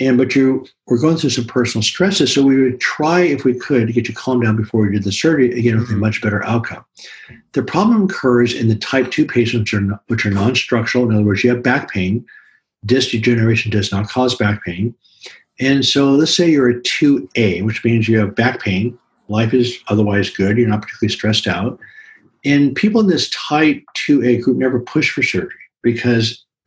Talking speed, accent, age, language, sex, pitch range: 205 wpm, American, 50-69, English, male, 110-135 Hz